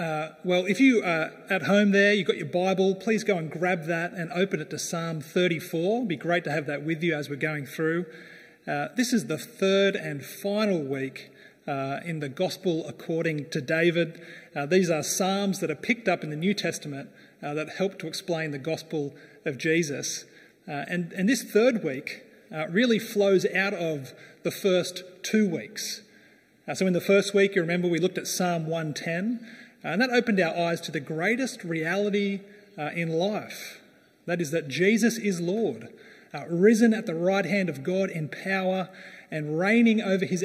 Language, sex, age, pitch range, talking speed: English, male, 30-49, 160-195 Hz, 195 wpm